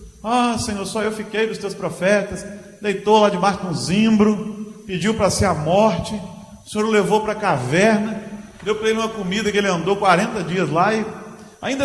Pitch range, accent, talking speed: 175-215 Hz, Brazilian, 190 wpm